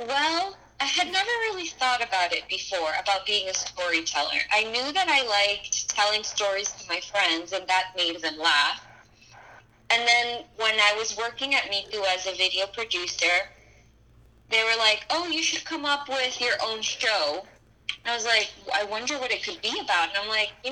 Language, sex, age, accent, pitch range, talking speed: English, female, 20-39, American, 190-240 Hz, 190 wpm